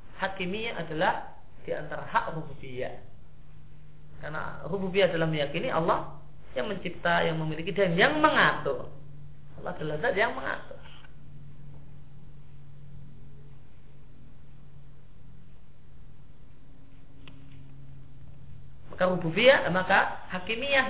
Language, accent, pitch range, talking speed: Indonesian, native, 125-195 Hz, 75 wpm